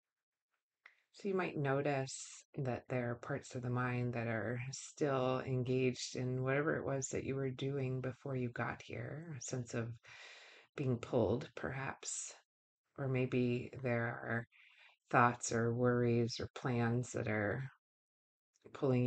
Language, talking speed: English, 140 wpm